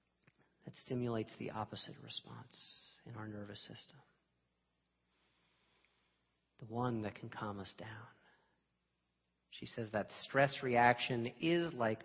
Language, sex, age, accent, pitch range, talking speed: English, male, 40-59, American, 115-145 Hz, 115 wpm